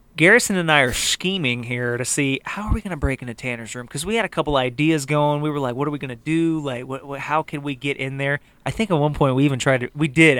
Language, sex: English, male